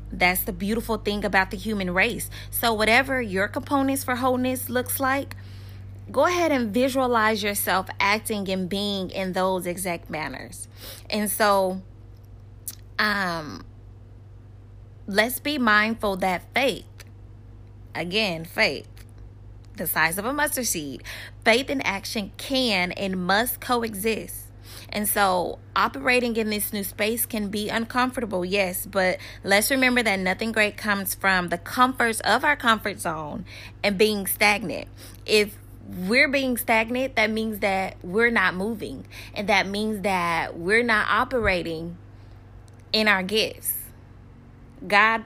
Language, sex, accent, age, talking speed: English, female, American, 20-39, 135 wpm